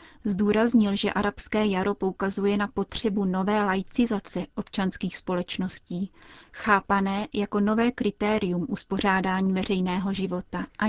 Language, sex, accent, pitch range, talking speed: Czech, female, native, 190-210 Hz, 105 wpm